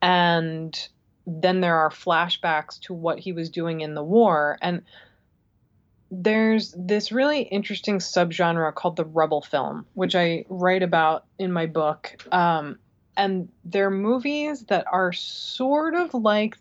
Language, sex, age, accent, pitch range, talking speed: English, female, 20-39, American, 165-200 Hz, 140 wpm